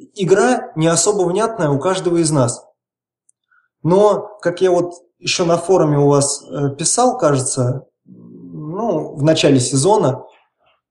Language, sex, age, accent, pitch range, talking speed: Russian, male, 20-39, native, 135-180 Hz, 125 wpm